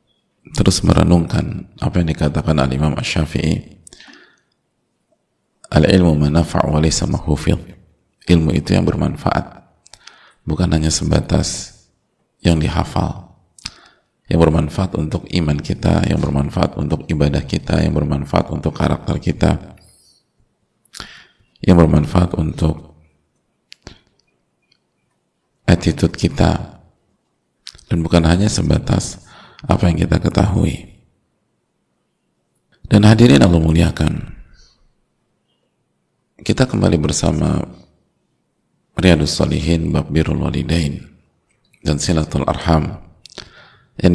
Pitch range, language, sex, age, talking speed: 75-90 Hz, Indonesian, male, 40-59, 80 wpm